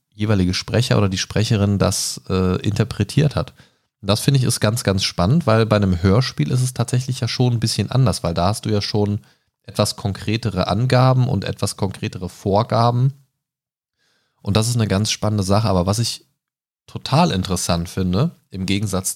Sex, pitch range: male, 95-130 Hz